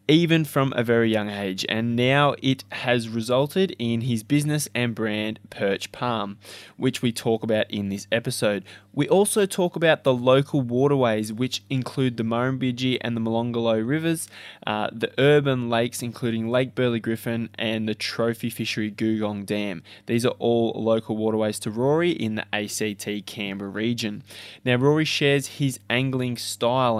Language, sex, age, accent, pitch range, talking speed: English, male, 20-39, Australian, 110-135 Hz, 160 wpm